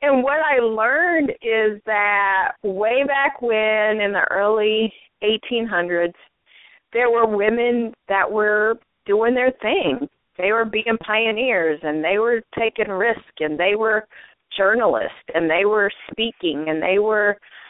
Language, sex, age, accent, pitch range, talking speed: English, female, 30-49, American, 185-225 Hz, 140 wpm